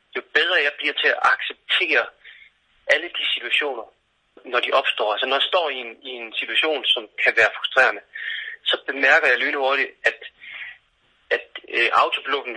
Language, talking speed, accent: Danish, 160 wpm, native